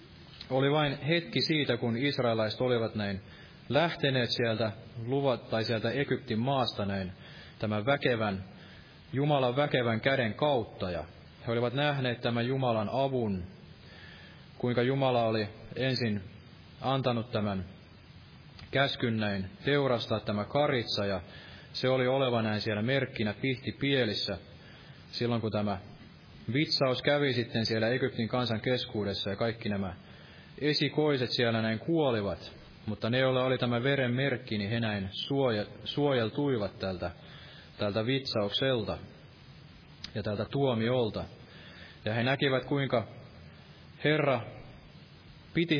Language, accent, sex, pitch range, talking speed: Finnish, native, male, 105-135 Hz, 115 wpm